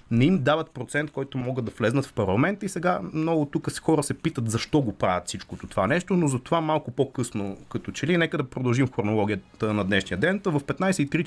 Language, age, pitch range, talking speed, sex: Bulgarian, 30-49, 105-150 Hz, 210 wpm, male